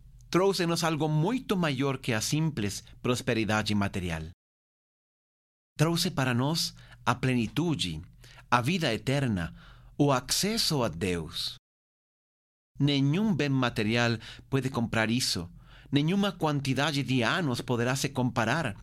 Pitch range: 110-150 Hz